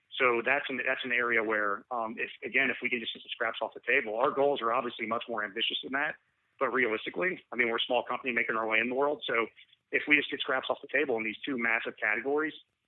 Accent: American